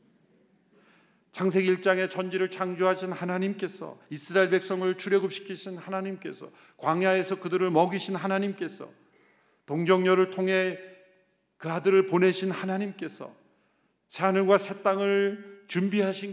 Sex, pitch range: male, 140-195 Hz